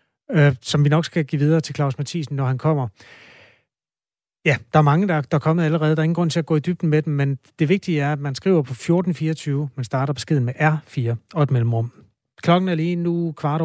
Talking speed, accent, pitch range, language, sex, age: 235 wpm, native, 130-160 Hz, Danish, male, 30-49